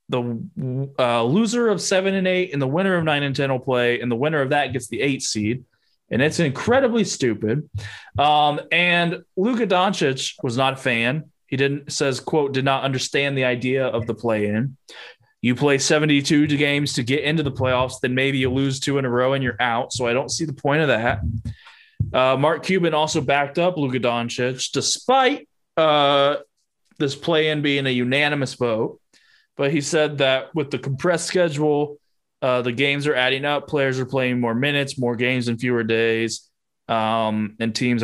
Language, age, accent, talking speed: English, 20-39, American, 190 wpm